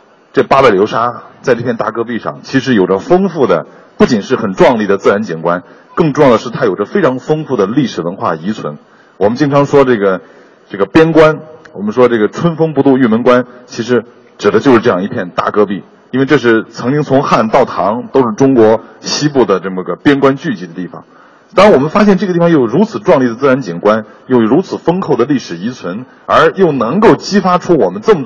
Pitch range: 100-140 Hz